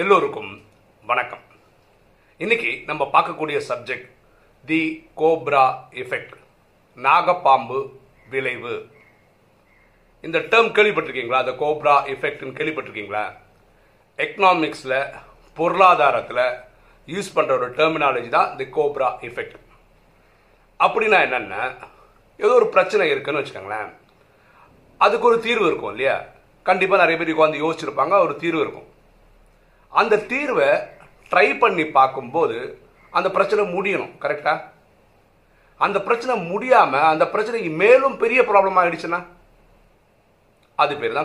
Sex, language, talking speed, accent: male, Tamil, 55 wpm, native